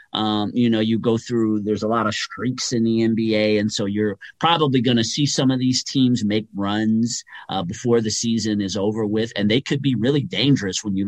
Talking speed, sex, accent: 225 wpm, male, American